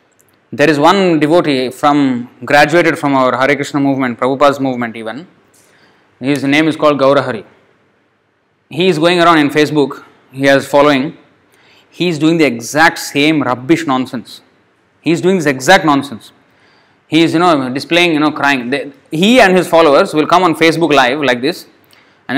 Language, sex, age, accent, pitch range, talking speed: English, male, 20-39, Indian, 130-160 Hz, 165 wpm